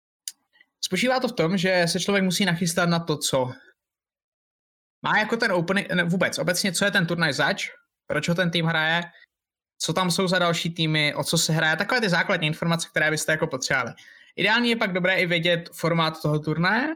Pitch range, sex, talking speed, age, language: 155-195 Hz, male, 195 wpm, 20-39, Slovak